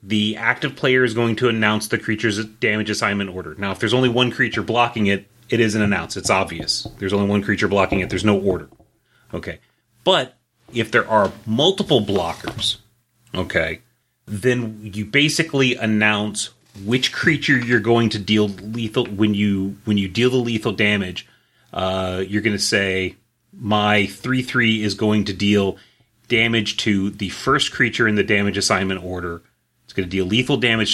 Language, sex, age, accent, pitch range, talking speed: English, male, 30-49, American, 100-115 Hz, 170 wpm